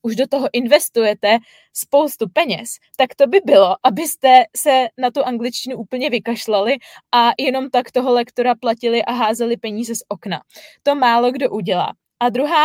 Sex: female